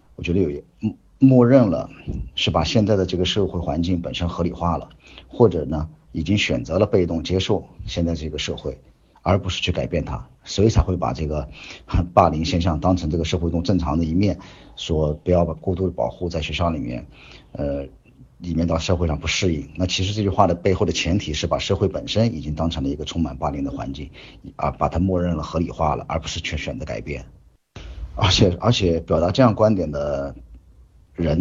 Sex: male